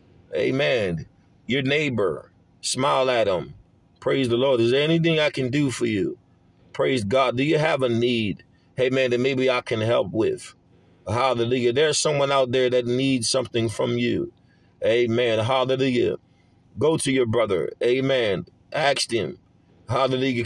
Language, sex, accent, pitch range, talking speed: English, male, American, 130-170 Hz, 145 wpm